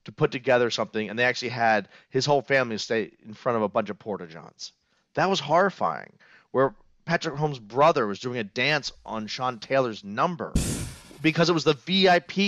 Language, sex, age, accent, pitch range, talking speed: English, male, 30-49, American, 135-195 Hz, 190 wpm